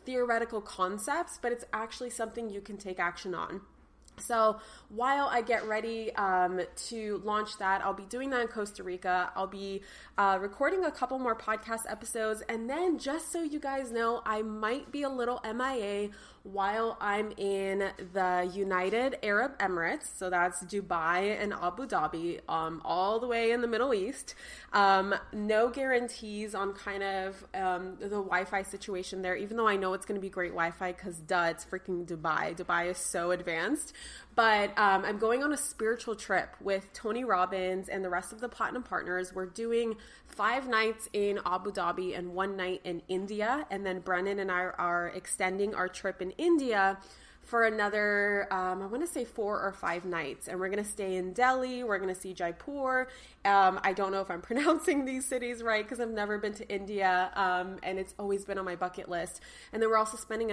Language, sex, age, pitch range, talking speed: English, female, 20-39, 185-230 Hz, 190 wpm